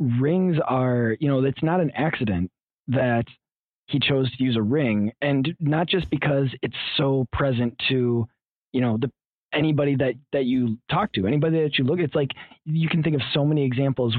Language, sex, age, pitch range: English, male, 20-39, 115-145 Hz